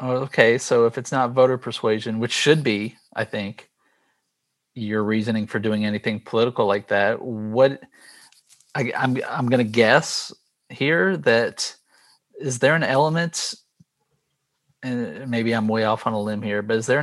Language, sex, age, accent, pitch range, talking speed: English, male, 40-59, American, 110-145 Hz, 155 wpm